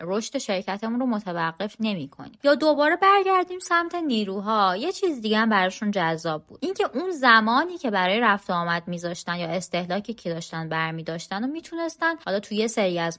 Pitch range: 165-230 Hz